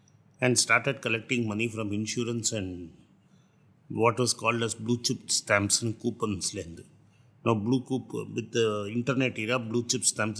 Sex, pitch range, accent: male, 110-125 Hz, native